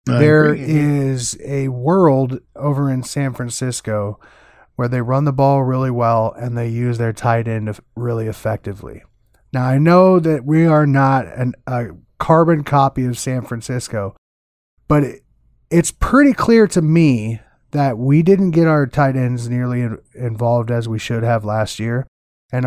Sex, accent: male, American